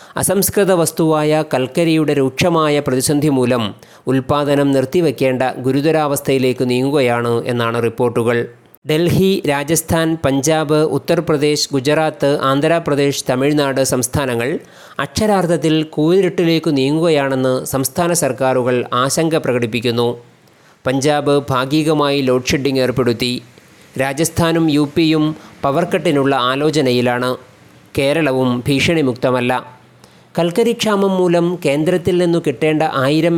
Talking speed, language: 80 wpm, Malayalam